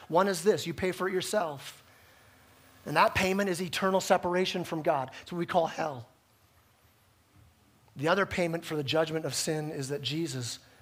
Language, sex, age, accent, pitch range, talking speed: English, male, 30-49, American, 140-215 Hz, 180 wpm